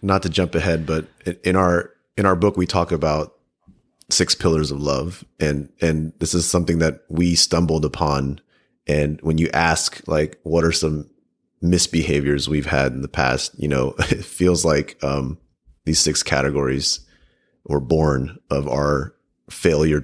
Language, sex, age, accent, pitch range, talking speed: English, male, 30-49, American, 75-90 Hz, 160 wpm